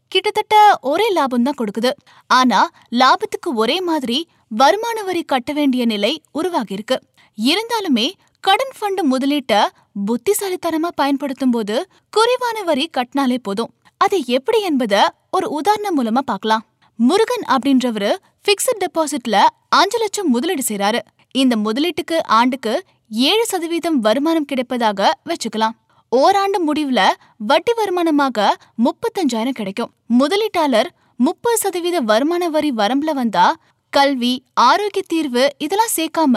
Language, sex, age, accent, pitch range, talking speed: Tamil, female, 20-39, native, 255-370 Hz, 65 wpm